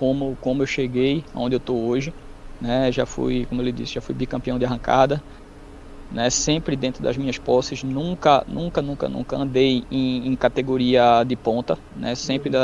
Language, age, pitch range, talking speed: Portuguese, 20-39, 120-140 Hz, 175 wpm